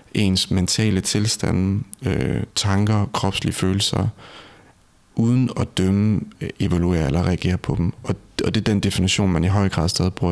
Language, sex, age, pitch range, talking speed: Danish, male, 30-49, 90-105 Hz, 145 wpm